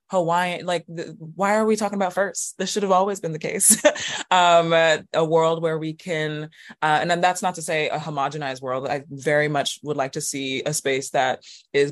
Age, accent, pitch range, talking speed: 20-39, American, 135-160 Hz, 220 wpm